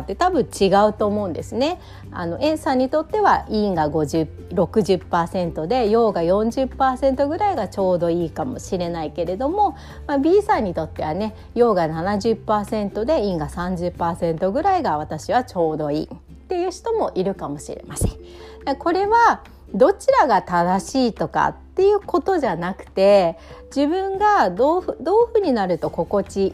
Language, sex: Japanese, female